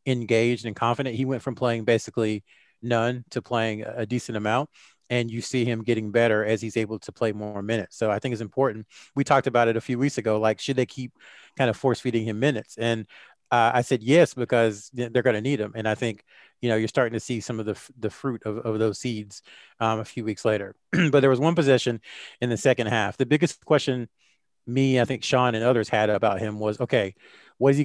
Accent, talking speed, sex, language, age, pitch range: American, 235 wpm, male, English, 30-49, 110-135 Hz